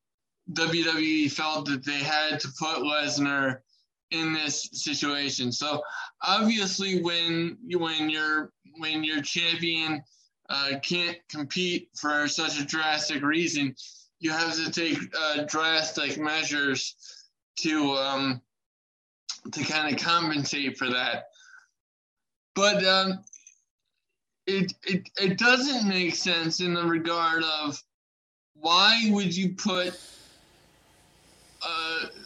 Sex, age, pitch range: male, 20-39, 155-180 Hz